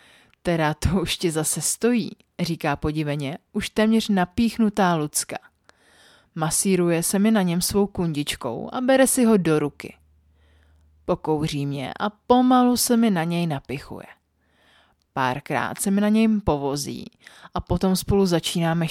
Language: Czech